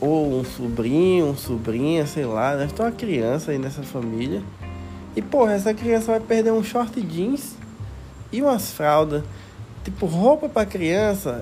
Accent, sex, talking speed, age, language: Brazilian, male, 165 wpm, 20-39, Portuguese